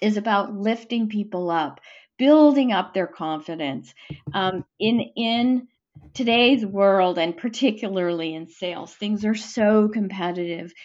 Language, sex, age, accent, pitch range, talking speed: English, female, 40-59, American, 195-255 Hz, 120 wpm